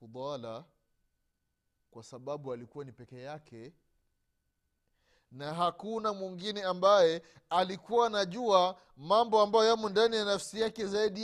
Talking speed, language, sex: 110 wpm, Swahili, male